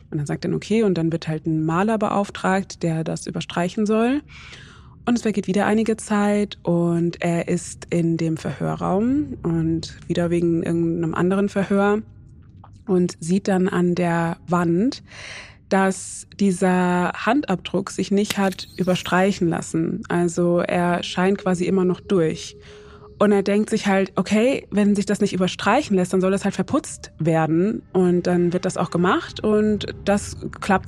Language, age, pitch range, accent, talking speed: German, 20-39, 170-200 Hz, German, 160 wpm